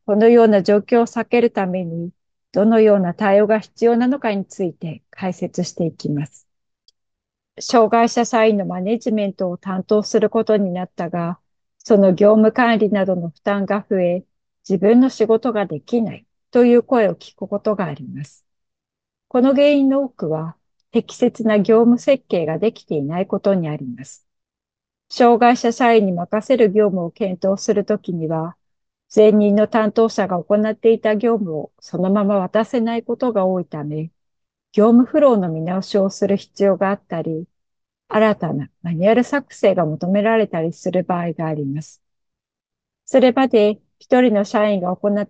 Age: 40-59